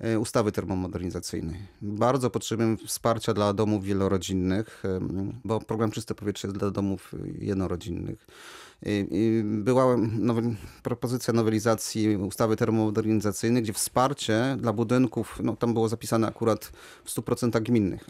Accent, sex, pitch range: native, male, 110-130 Hz